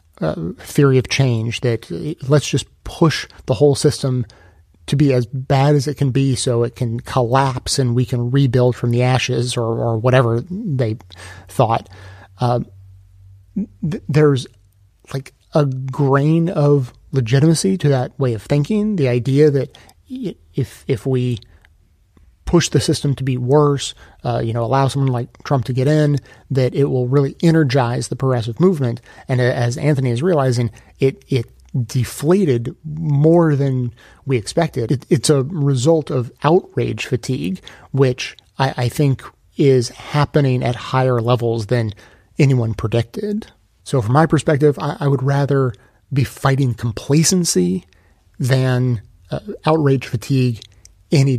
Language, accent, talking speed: English, American, 145 wpm